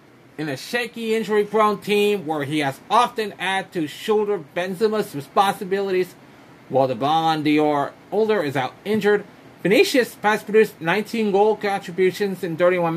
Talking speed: 135 wpm